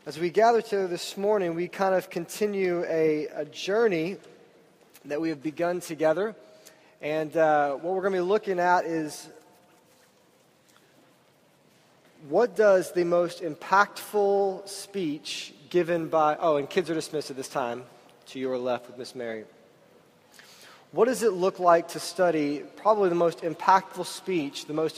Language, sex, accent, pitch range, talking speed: English, male, American, 160-195 Hz, 155 wpm